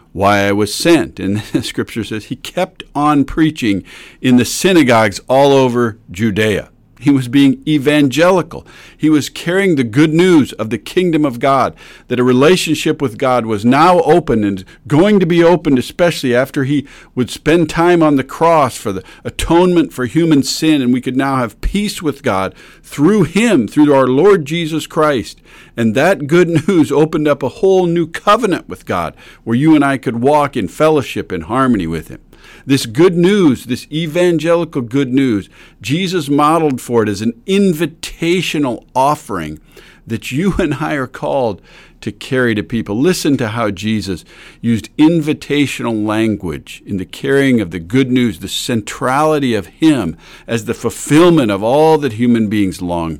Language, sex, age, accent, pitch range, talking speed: English, male, 50-69, American, 115-160 Hz, 170 wpm